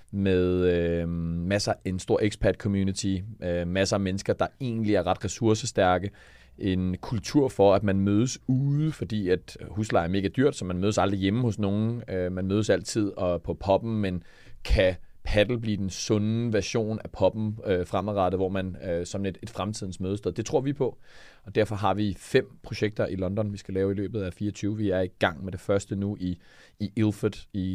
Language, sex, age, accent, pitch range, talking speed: Danish, male, 30-49, native, 95-110 Hz, 190 wpm